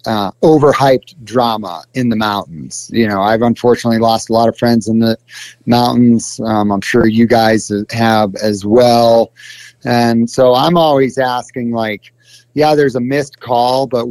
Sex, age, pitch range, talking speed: male, 30-49, 110-130 Hz, 160 wpm